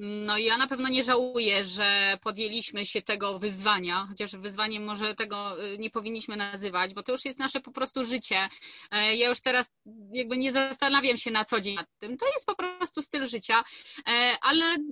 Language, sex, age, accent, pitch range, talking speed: Polish, female, 30-49, native, 225-285 Hz, 185 wpm